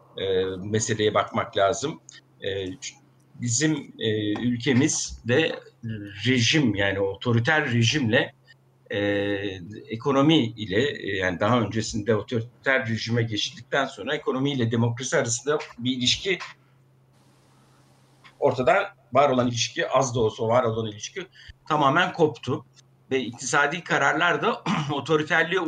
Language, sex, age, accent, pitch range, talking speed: Turkish, male, 60-79, native, 115-145 Hz, 110 wpm